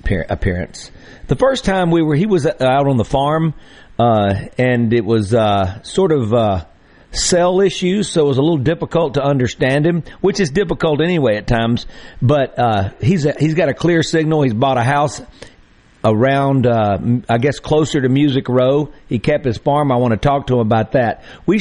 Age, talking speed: 50-69, 195 wpm